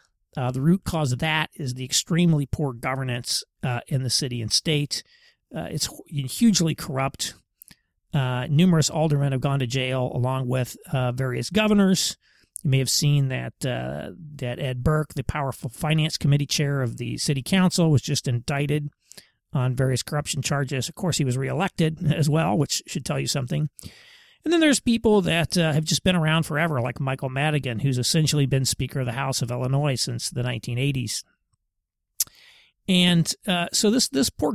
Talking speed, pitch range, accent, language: 175 wpm, 130-165 Hz, American, English